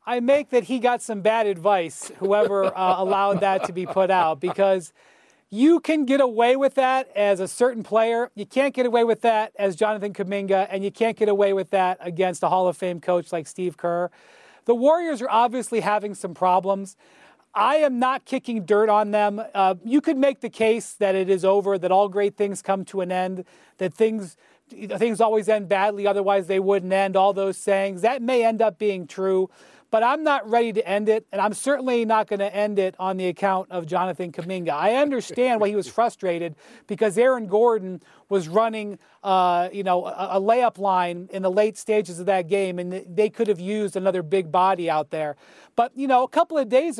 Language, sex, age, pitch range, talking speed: English, male, 40-59, 190-230 Hz, 210 wpm